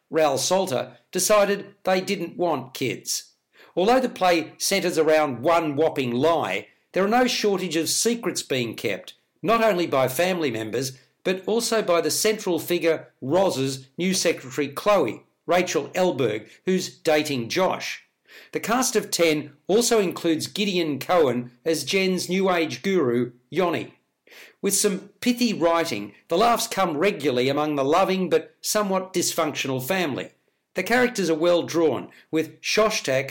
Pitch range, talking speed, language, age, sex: 150-190 Hz, 140 wpm, English, 50-69, male